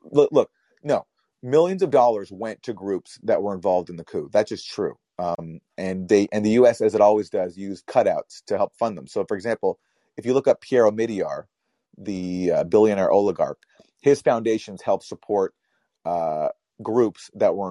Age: 40-59